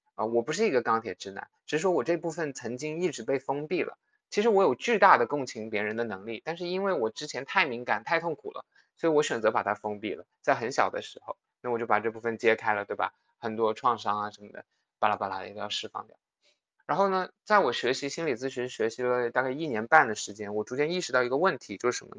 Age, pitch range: 20-39, 120-185 Hz